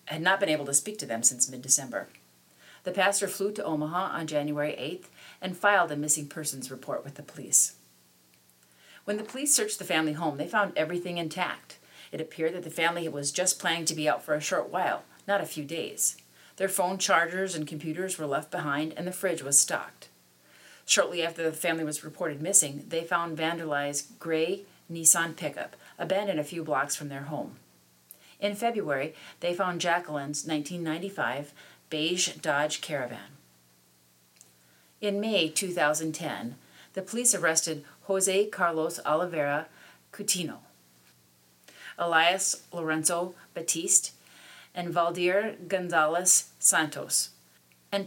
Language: English